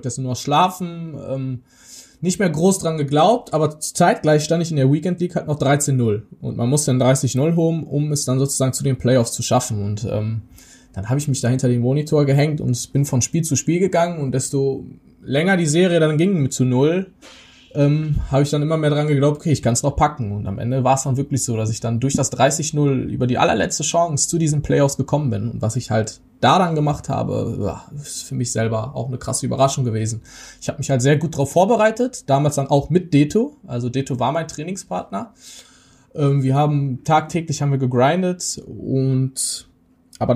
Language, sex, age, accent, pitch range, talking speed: German, male, 20-39, German, 130-155 Hz, 215 wpm